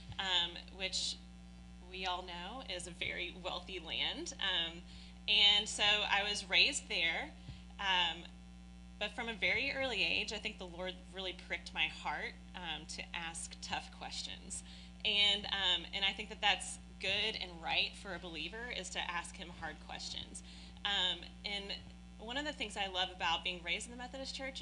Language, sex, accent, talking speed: English, female, American, 175 wpm